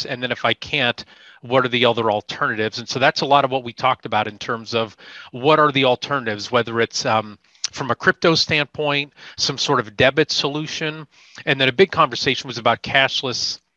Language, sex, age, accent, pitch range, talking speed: English, male, 30-49, American, 115-145 Hz, 205 wpm